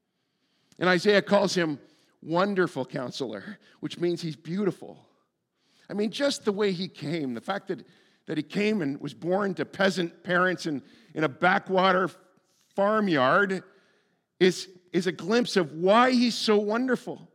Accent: American